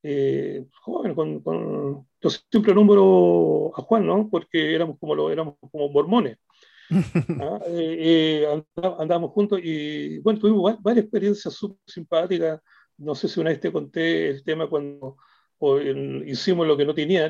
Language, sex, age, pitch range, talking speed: Spanish, male, 40-59, 150-195 Hz, 155 wpm